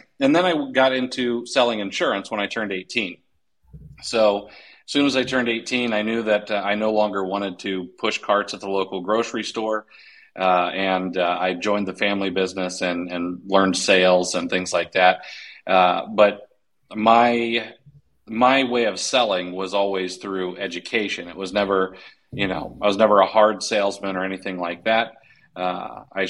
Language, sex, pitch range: English, male, 95-110 Hz